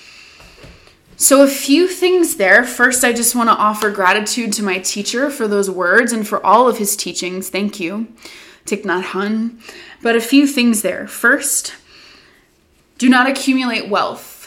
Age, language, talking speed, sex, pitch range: 20-39, English, 160 wpm, female, 200-250 Hz